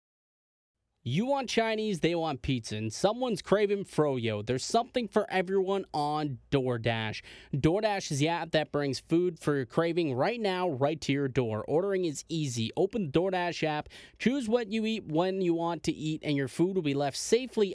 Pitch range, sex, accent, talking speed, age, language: 145-190 Hz, male, American, 185 wpm, 20-39, English